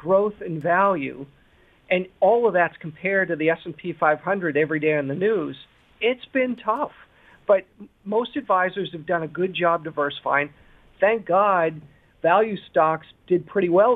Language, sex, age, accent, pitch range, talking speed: English, male, 50-69, American, 165-205 Hz, 155 wpm